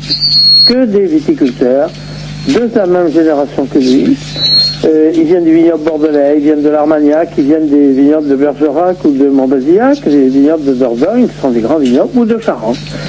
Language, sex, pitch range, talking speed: French, male, 150-195 Hz, 185 wpm